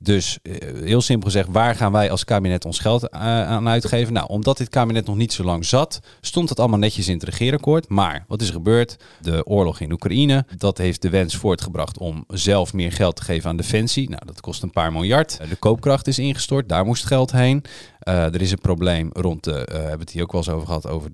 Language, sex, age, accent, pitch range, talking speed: Dutch, male, 40-59, Dutch, 90-120 Hz, 235 wpm